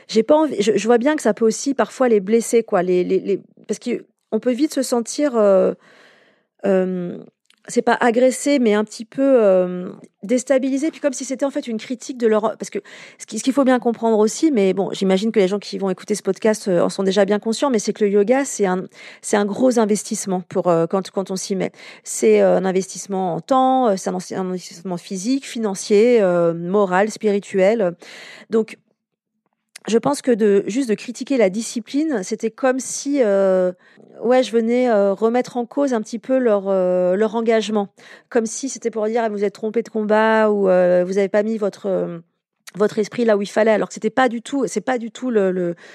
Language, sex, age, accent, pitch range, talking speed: French, female, 40-59, French, 195-235 Hz, 215 wpm